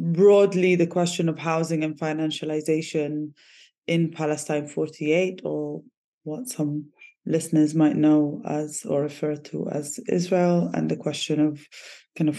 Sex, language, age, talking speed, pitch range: female, English, 20-39, 135 wpm, 145-165 Hz